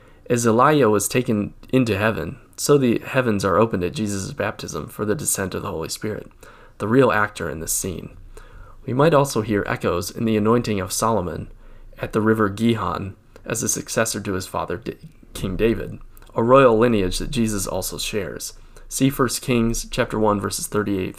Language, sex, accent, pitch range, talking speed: English, male, American, 100-120 Hz, 180 wpm